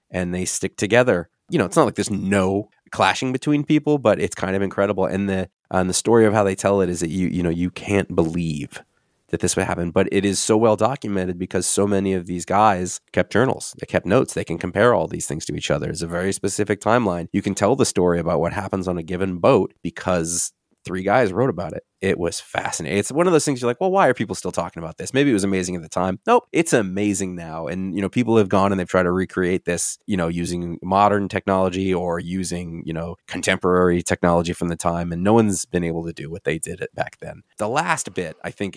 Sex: male